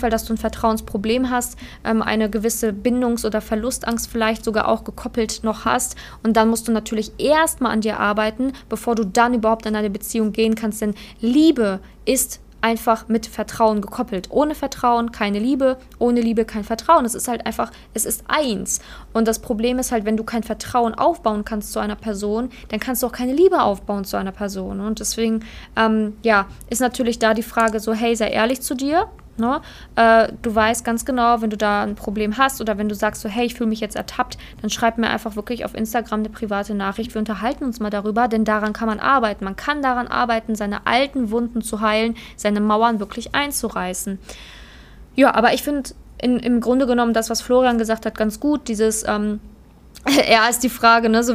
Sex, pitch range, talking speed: female, 215-245 Hz, 205 wpm